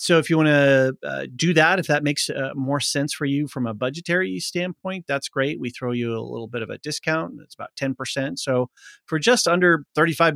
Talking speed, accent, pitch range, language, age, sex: 230 wpm, American, 115-160 Hz, English, 40-59, male